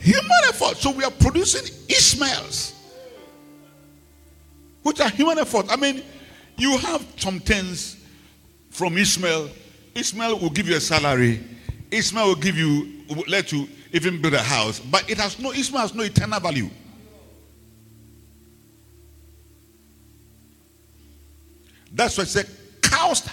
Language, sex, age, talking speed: English, male, 50-69, 130 wpm